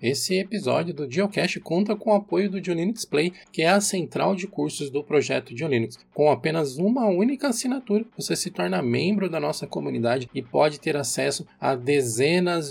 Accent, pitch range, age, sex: Brazilian, 145-195 Hz, 20-39, male